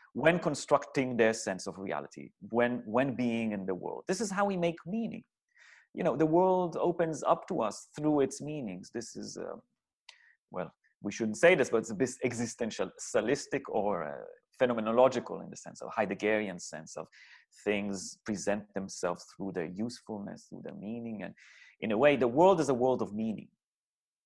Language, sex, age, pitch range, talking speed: English, male, 30-49, 110-170 Hz, 180 wpm